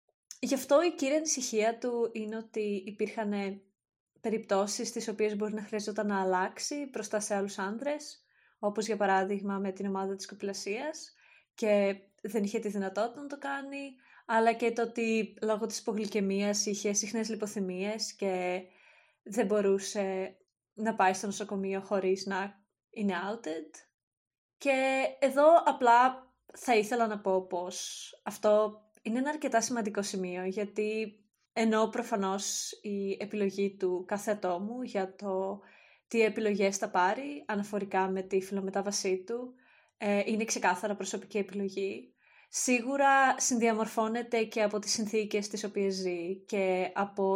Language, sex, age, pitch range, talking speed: Greek, female, 20-39, 195-230 Hz, 130 wpm